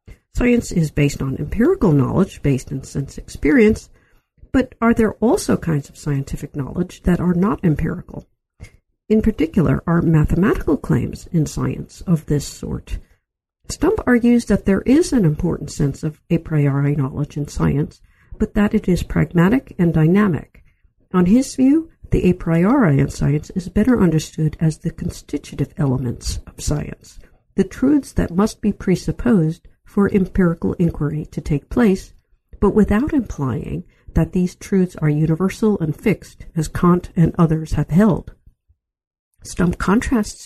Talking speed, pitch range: 150 wpm, 150-210 Hz